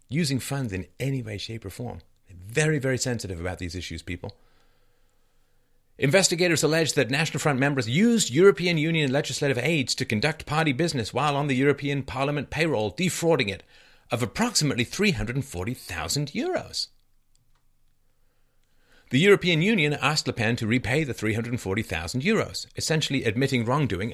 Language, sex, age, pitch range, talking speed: English, male, 40-59, 95-145 Hz, 135 wpm